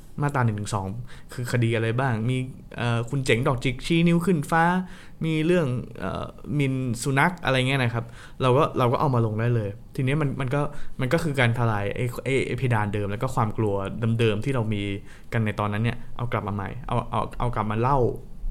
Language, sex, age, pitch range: Thai, male, 20-39, 115-140 Hz